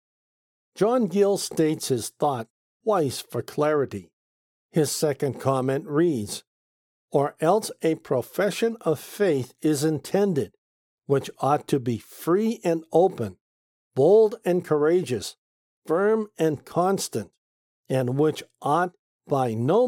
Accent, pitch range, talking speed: American, 135-190 Hz, 115 wpm